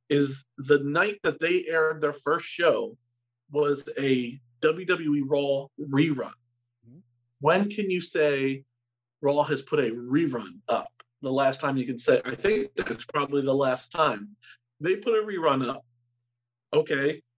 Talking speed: 150 wpm